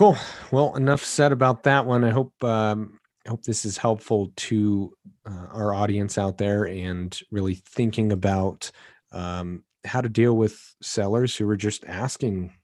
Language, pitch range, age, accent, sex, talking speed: English, 100-120 Hz, 30-49, American, male, 165 wpm